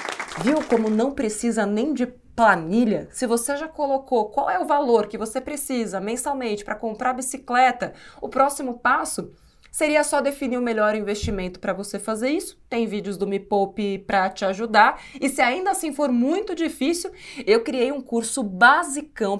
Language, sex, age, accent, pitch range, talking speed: Portuguese, female, 20-39, Brazilian, 205-285 Hz, 170 wpm